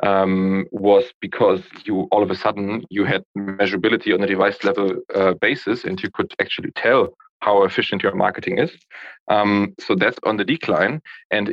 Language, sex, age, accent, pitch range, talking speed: English, male, 20-39, German, 95-115 Hz, 175 wpm